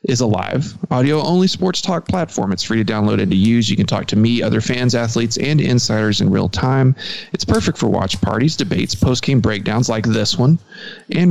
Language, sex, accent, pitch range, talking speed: English, male, American, 110-145 Hz, 205 wpm